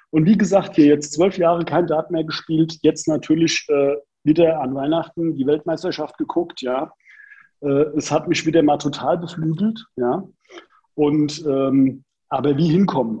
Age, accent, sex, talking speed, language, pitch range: 40-59, German, male, 160 wpm, German, 145-190 Hz